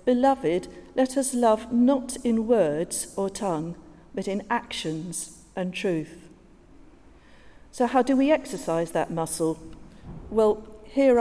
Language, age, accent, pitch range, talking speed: English, 50-69, British, 170-230 Hz, 125 wpm